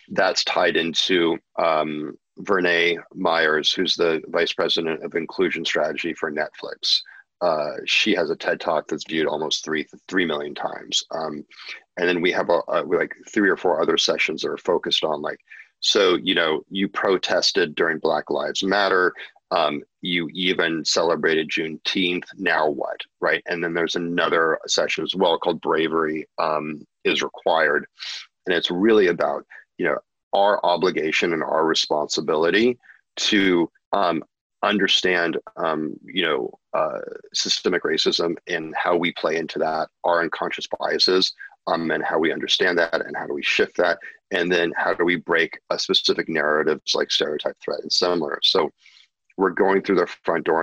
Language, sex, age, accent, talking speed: English, male, 40-59, American, 160 wpm